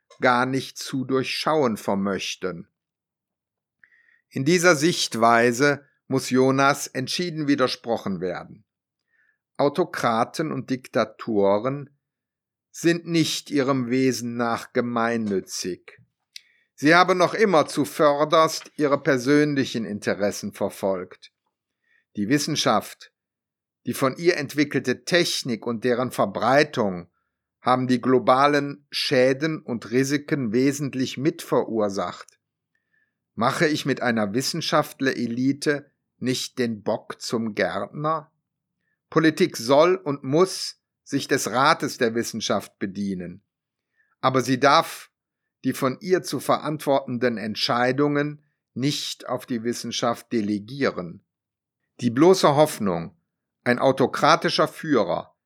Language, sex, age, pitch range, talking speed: German, male, 60-79, 120-150 Hz, 95 wpm